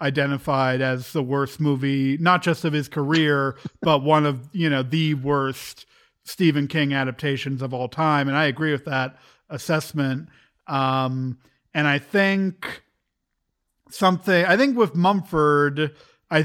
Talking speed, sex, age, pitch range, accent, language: 140 wpm, male, 50-69, 130-150 Hz, American, English